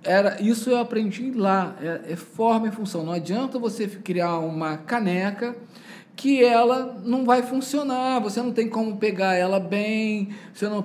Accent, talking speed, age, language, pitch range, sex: Brazilian, 165 wpm, 20-39, Portuguese, 180-240 Hz, male